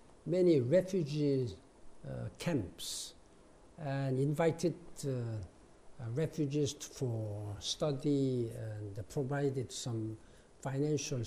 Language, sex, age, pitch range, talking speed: English, male, 60-79, 135-180 Hz, 85 wpm